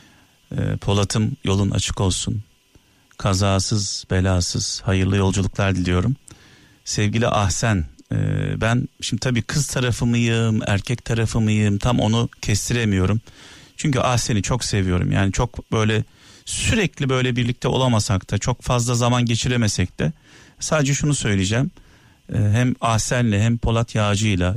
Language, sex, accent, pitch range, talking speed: Turkish, male, native, 100-125 Hz, 115 wpm